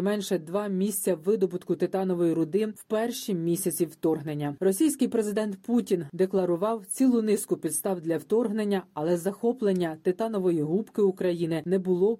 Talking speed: 130 wpm